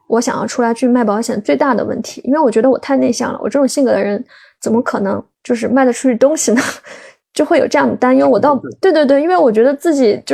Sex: female